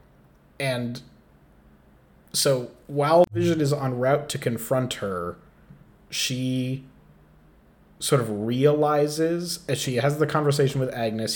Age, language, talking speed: 30-49, English, 110 wpm